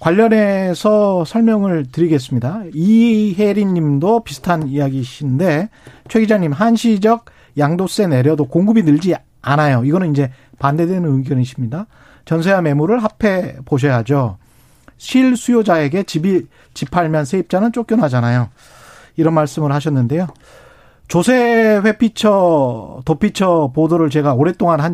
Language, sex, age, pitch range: Korean, male, 40-59, 140-210 Hz